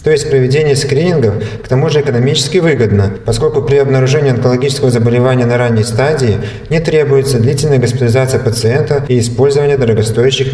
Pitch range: 115-140 Hz